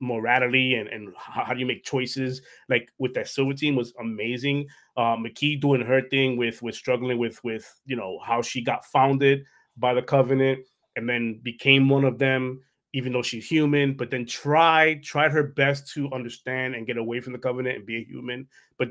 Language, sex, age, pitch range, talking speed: English, male, 20-39, 120-140 Hz, 205 wpm